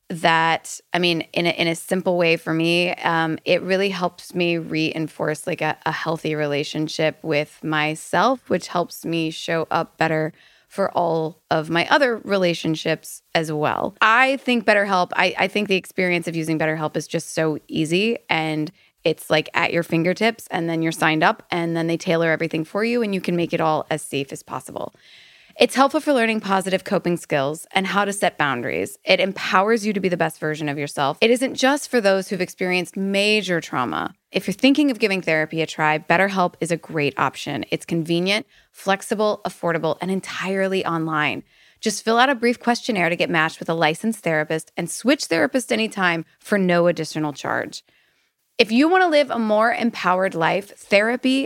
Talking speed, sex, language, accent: 190 wpm, female, English, American